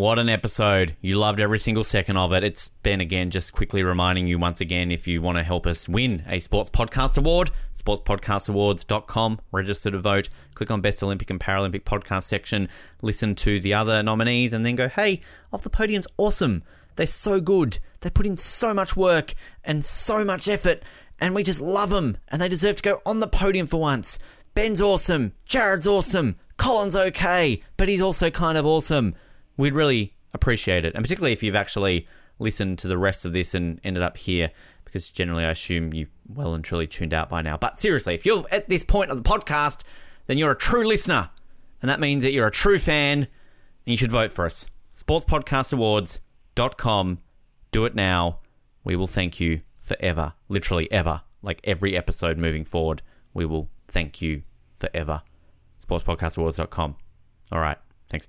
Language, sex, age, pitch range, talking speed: English, male, 20-39, 85-135 Hz, 185 wpm